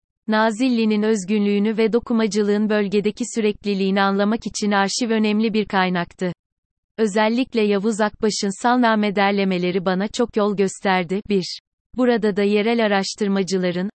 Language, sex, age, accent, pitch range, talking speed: Turkish, female, 30-49, native, 195-225 Hz, 110 wpm